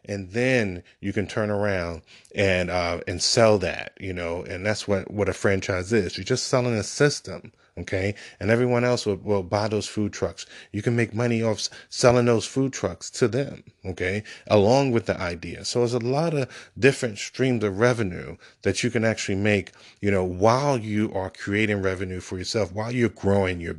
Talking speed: 195 wpm